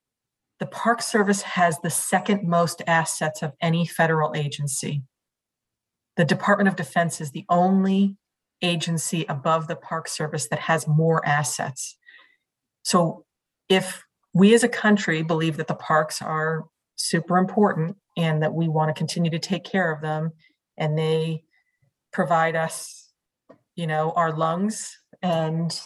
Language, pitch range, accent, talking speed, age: English, 160-200 Hz, American, 140 wpm, 40-59